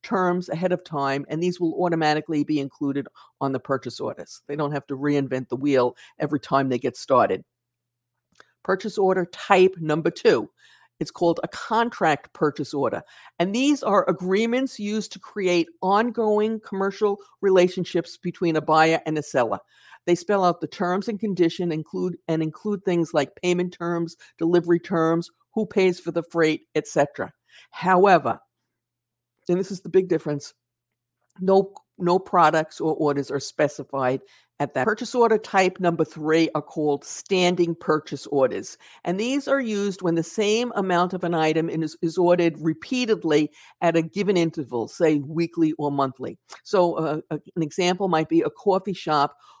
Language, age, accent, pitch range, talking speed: English, 50-69, American, 150-190 Hz, 160 wpm